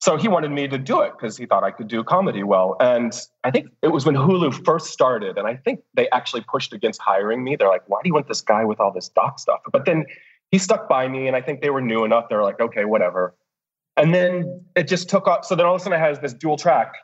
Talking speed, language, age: 280 wpm, English, 30-49